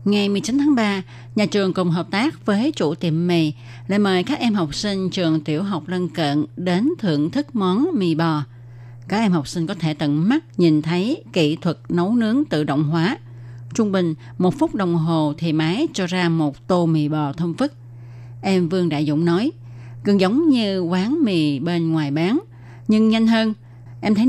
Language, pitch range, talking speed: Vietnamese, 150-200 Hz, 200 wpm